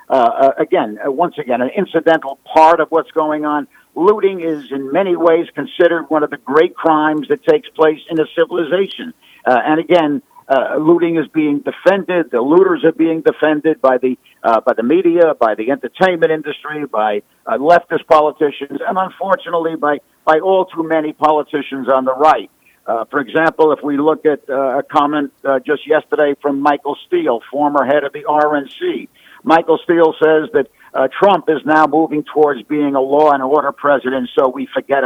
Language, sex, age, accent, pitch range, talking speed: English, male, 50-69, American, 140-165 Hz, 185 wpm